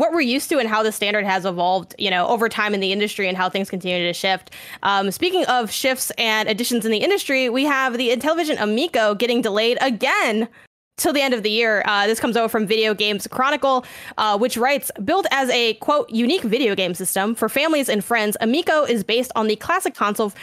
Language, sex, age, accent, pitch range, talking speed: English, female, 10-29, American, 210-260 Hz, 225 wpm